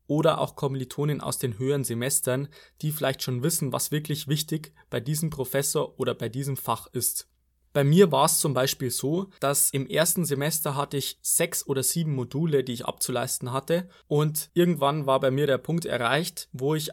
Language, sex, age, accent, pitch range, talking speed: German, male, 20-39, German, 130-155 Hz, 190 wpm